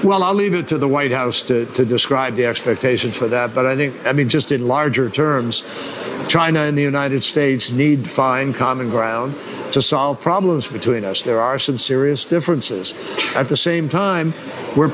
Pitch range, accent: 135-165 Hz, American